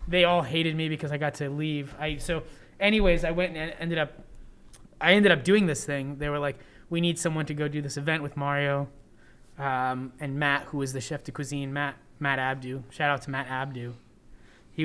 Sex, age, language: male, 20-39, English